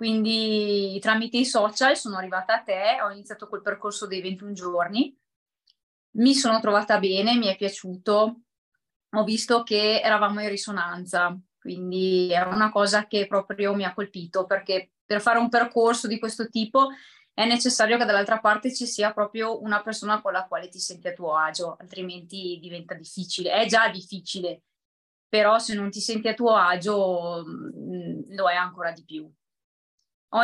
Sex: female